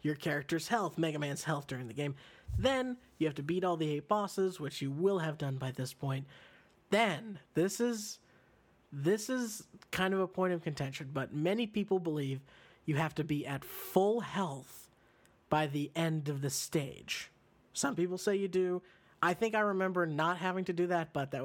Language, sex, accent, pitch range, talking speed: English, male, American, 140-180 Hz, 195 wpm